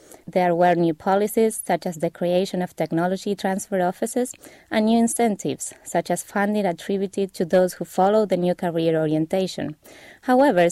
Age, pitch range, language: 20-39, 170-205 Hz, English